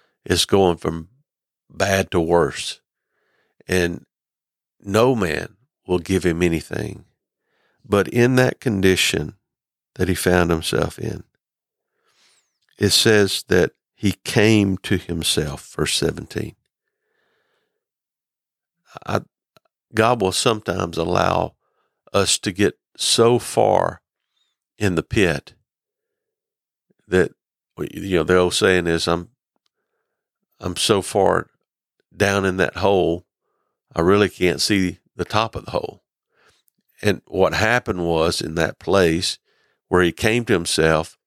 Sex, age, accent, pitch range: male, 50-69, American, 85-110 Hz